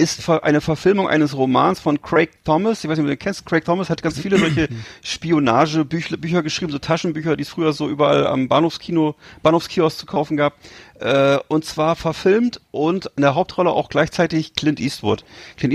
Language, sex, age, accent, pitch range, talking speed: German, male, 40-59, German, 140-165 Hz, 185 wpm